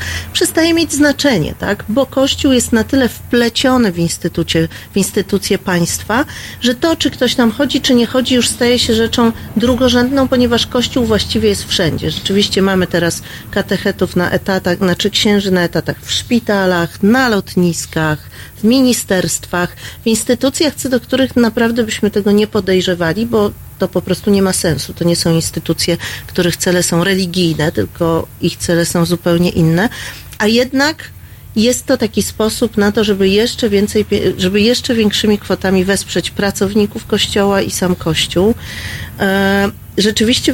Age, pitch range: 40-59, 180-235 Hz